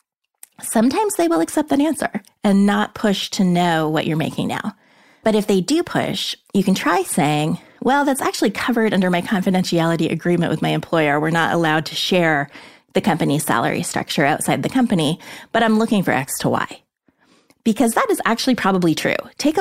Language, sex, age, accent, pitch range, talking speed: English, female, 30-49, American, 165-230 Hz, 185 wpm